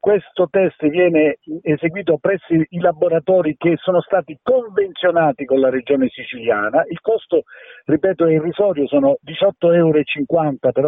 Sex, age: male, 50-69